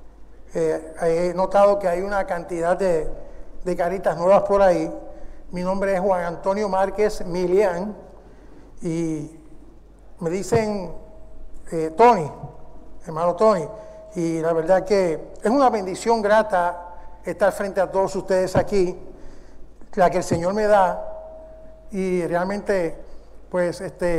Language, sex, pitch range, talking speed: English, male, 180-225 Hz, 125 wpm